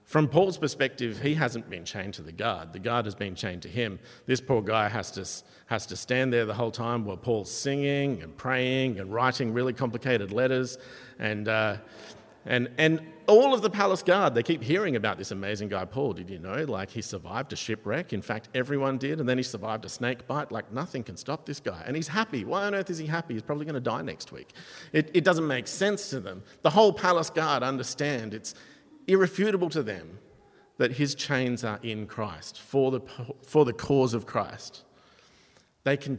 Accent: Australian